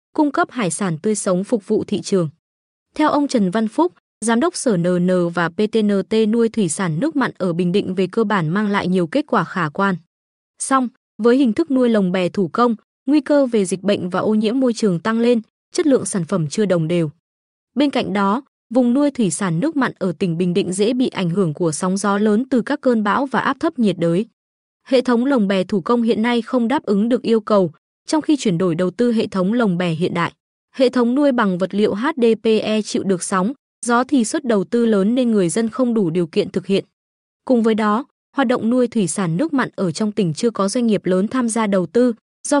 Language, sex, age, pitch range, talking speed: Vietnamese, female, 20-39, 190-250 Hz, 240 wpm